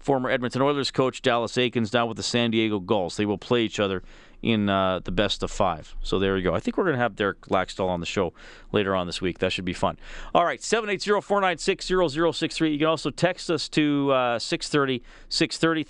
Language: English